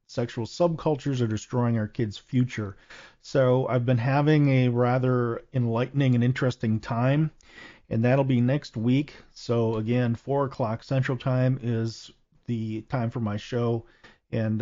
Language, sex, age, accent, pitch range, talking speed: English, male, 40-59, American, 110-130 Hz, 145 wpm